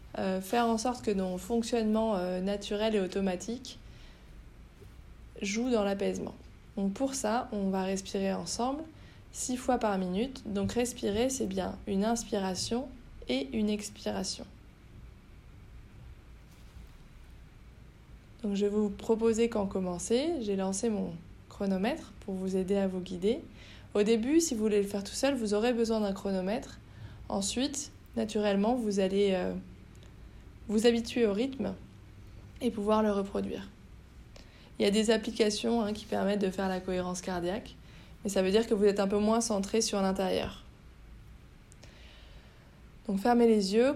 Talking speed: 145 wpm